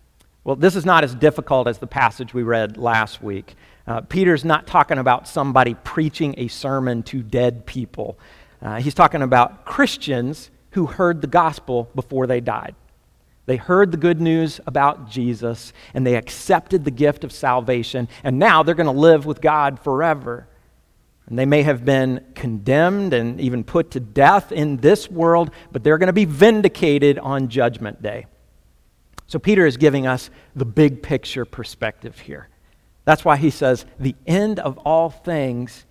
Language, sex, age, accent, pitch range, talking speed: English, male, 50-69, American, 120-155 Hz, 170 wpm